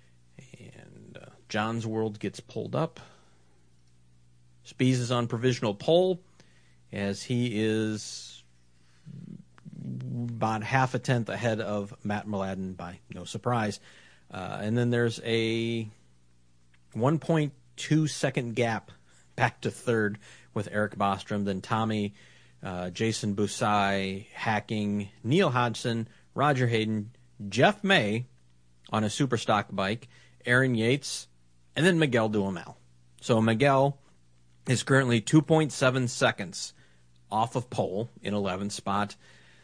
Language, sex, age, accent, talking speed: English, male, 40-59, American, 115 wpm